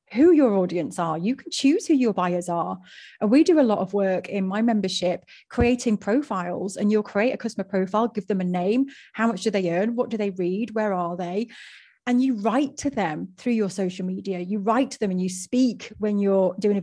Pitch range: 190-240 Hz